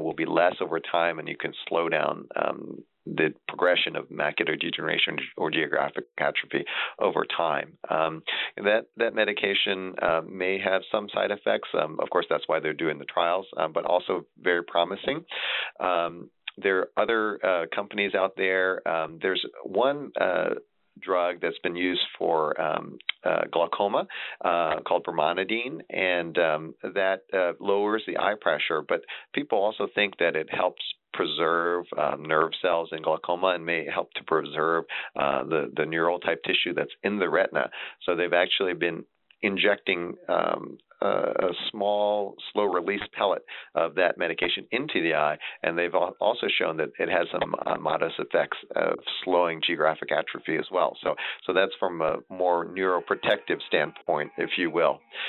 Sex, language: male, English